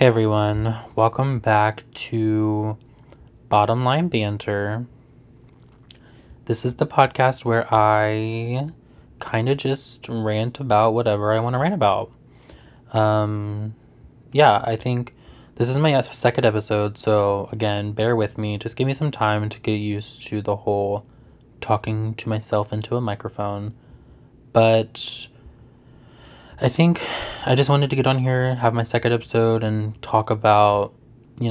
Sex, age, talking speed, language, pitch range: male, 20-39, 140 wpm, English, 105-125 Hz